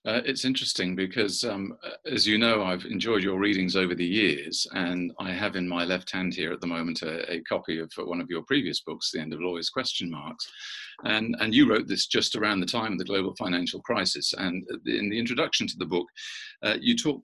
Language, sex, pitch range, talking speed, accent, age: English, male, 90-115 Hz, 235 wpm, British, 40-59